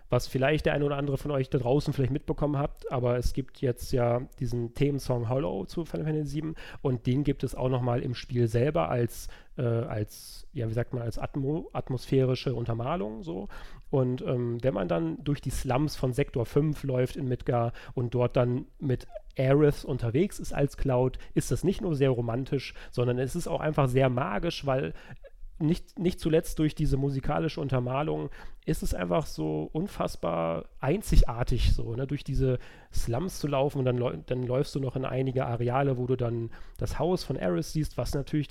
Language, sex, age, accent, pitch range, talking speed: German, male, 40-59, German, 125-150 Hz, 190 wpm